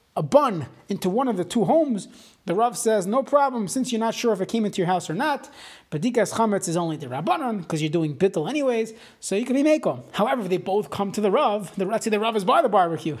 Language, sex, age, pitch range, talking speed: English, male, 30-49, 170-230 Hz, 265 wpm